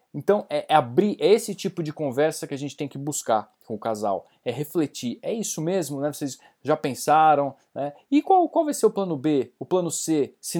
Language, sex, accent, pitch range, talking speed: Portuguese, male, Brazilian, 135-185 Hz, 220 wpm